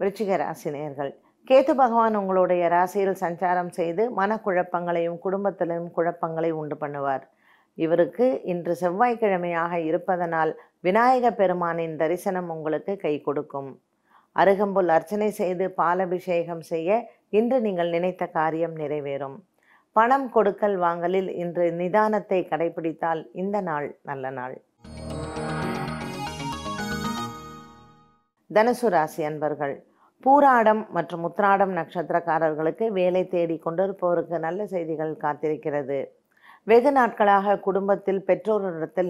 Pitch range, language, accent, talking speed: 160-195 Hz, Tamil, native, 90 wpm